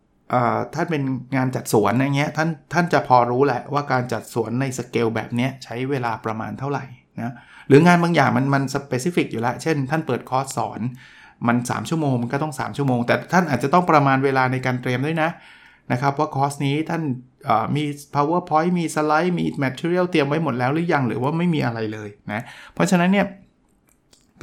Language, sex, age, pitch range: Thai, male, 20-39, 120-155 Hz